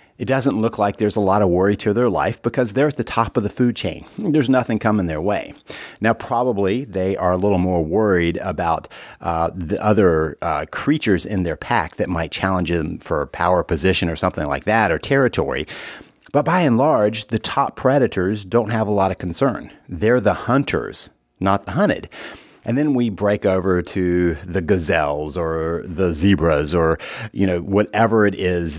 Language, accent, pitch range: English, American, 90-115 Hz